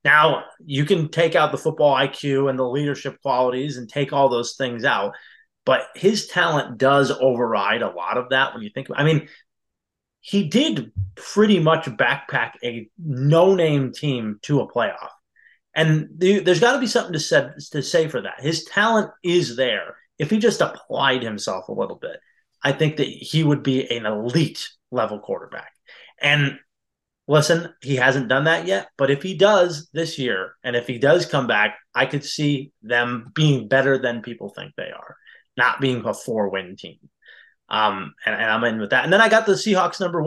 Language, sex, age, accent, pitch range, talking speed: English, male, 20-39, American, 125-170 Hz, 190 wpm